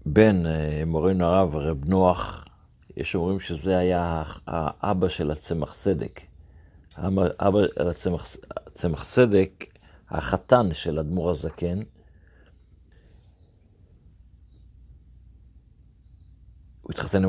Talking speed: 75 wpm